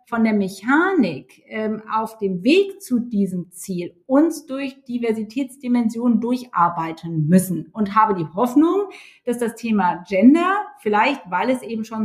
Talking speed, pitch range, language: 140 wpm, 205-260 Hz, German